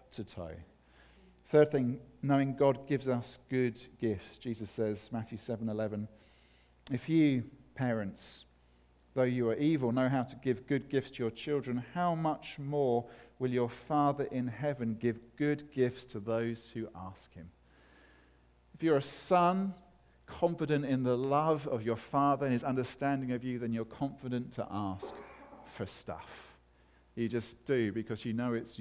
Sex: male